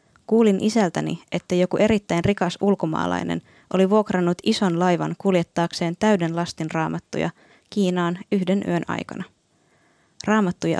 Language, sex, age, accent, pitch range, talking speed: Finnish, female, 20-39, native, 170-200 Hz, 110 wpm